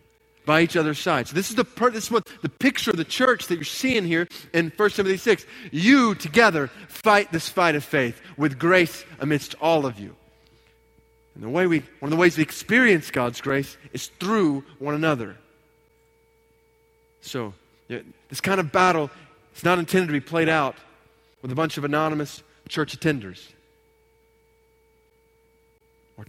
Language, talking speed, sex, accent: English, 170 wpm, male, American